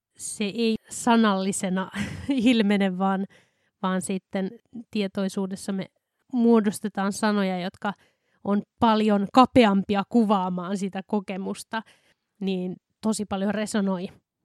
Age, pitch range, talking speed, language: 20-39, 195-220 Hz, 90 wpm, Finnish